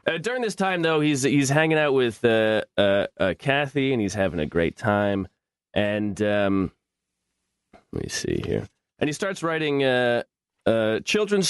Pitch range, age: 110-150 Hz, 30-49